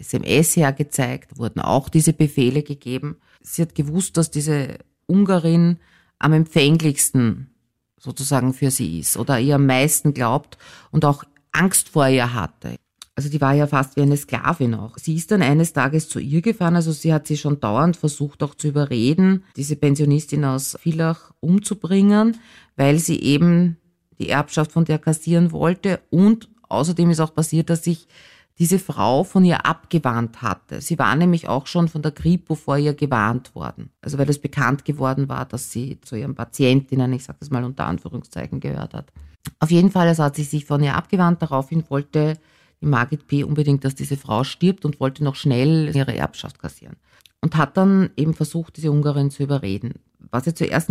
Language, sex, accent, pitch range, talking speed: German, female, Austrian, 135-165 Hz, 180 wpm